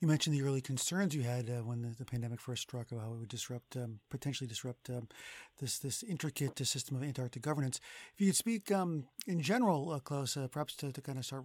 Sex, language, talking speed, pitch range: male, English, 245 wpm, 130-175 Hz